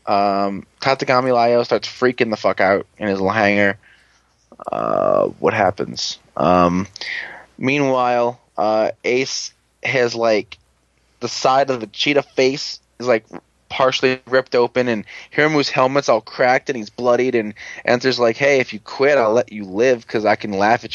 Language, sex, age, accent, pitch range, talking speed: English, male, 20-39, American, 105-130 Hz, 160 wpm